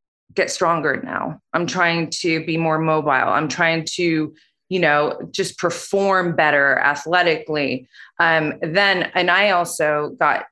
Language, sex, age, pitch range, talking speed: English, female, 30-49, 155-200 Hz, 135 wpm